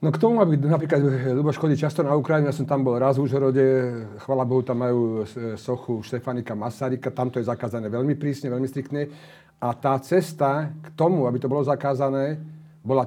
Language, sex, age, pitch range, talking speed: Slovak, male, 40-59, 130-150 Hz, 190 wpm